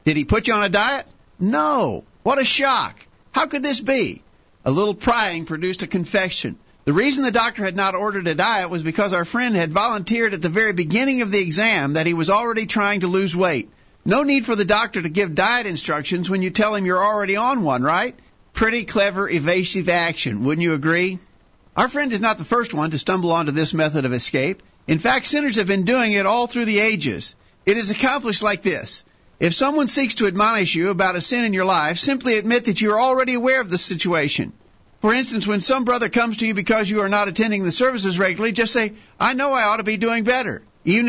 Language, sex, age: English, male, 50-69